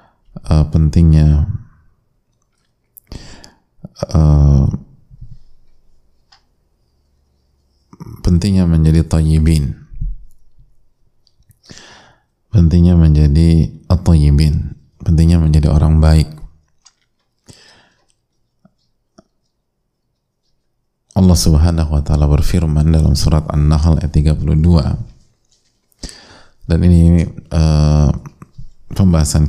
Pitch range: 75-85 Hz